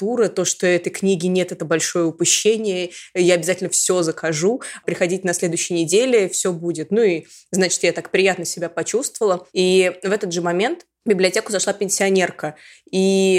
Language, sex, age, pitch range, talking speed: Russian, female, 20-39, 170-195 Hz, 160 wpm